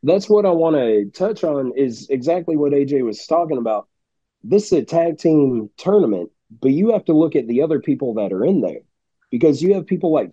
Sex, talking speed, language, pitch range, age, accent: male, 220 wpm, English, 135-170 Hz, 30-49, American